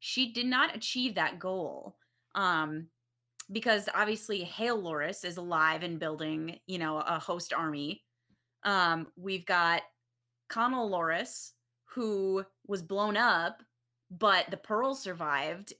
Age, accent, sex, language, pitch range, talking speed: 20-39, American, female, English, 150-205 Hz, 125 wpm